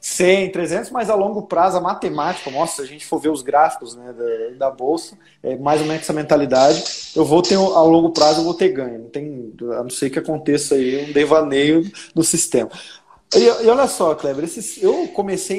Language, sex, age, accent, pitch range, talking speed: Portuguese, male, 20-39, Brazilian, 155-235 Hz, 210 wpm